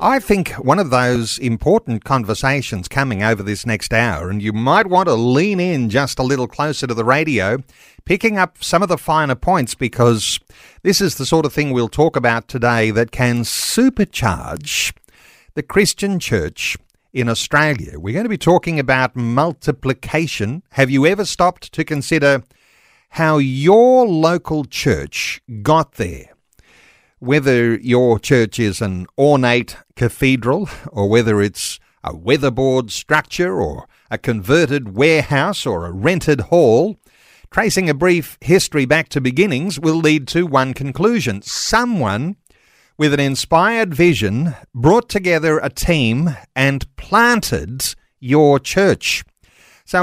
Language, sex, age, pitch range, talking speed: English, male, 50-69, 120-170 Hz, 140 wpm